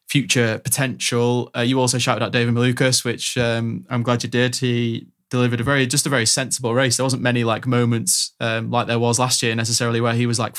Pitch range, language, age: 115-125 Hz, English, 20-39